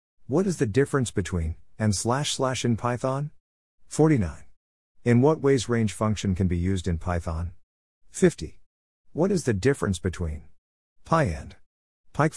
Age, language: 50-69, English